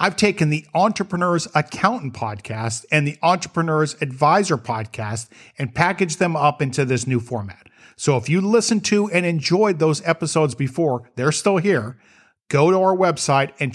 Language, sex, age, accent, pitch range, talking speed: English, male, 50-69, American, 125-170 Hz, 160 wpm